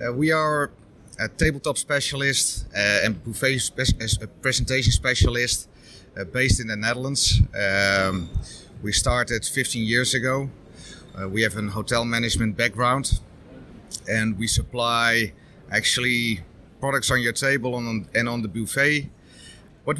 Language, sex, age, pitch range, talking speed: English, male, 30-49, 105-125 Hz, 125 wpm